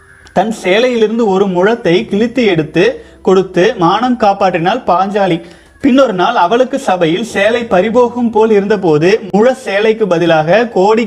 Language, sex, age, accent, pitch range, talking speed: Tamil, male, 30-49, native, 180-230 Hz, 120 wpm